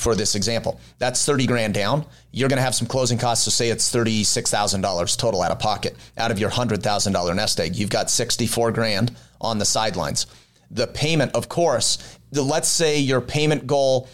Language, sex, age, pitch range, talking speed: English, male, 30-49, 110-135 Hz, 195 wpm